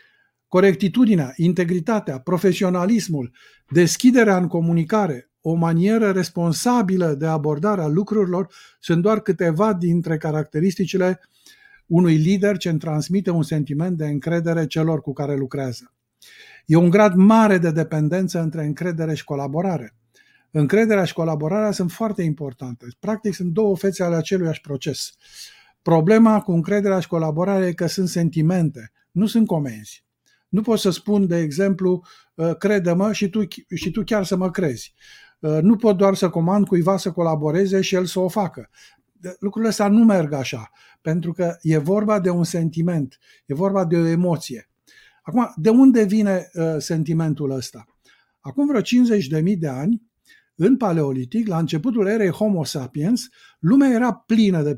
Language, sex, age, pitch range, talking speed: Romanian, male, 50-69, 160-210 Hz, 145 wpm